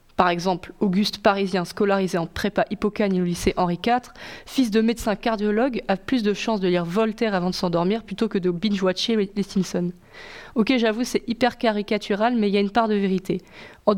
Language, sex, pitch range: French, female, 195-235 Hz